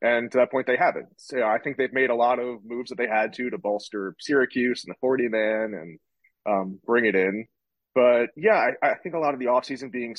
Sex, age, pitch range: male, 30-49, 100-125 Hz